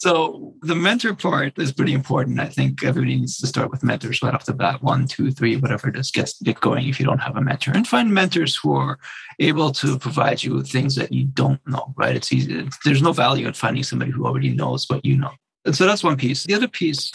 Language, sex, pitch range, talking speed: English, male, 125-150 Hz, 250 wpm